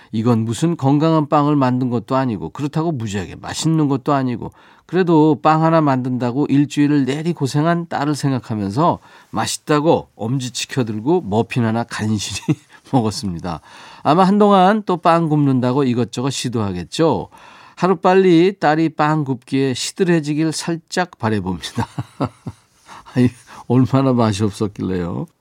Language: Korean